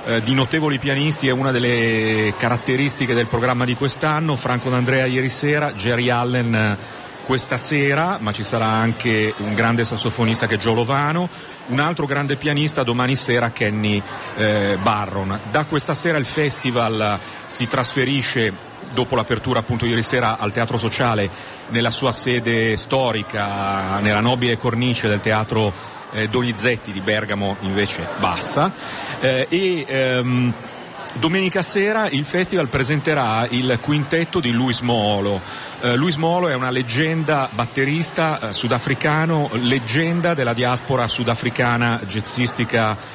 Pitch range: 115-140 Hz